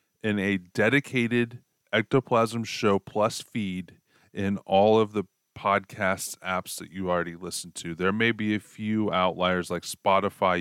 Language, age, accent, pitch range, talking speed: English, 30-49, American, 90-110 Hz, 145 wpm